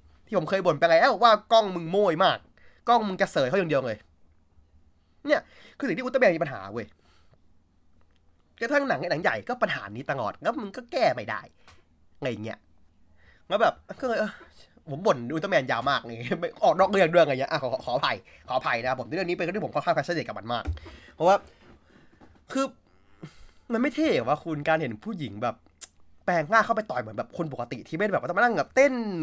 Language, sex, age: Thai, male, 20-39